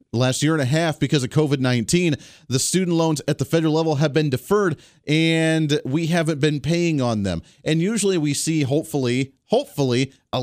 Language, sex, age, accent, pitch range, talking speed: English, male, 40-59, American, 130-170 Hz, 185 wpm